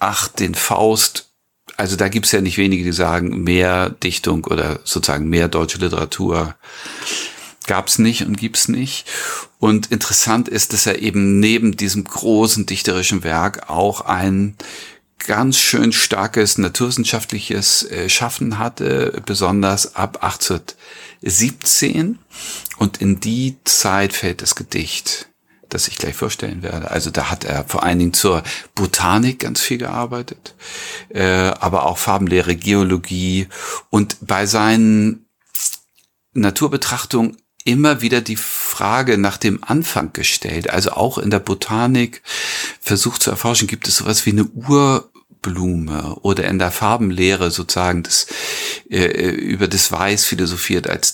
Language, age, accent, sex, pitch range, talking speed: German, 40-59, German, male, 90-110 Hz, 130 wpm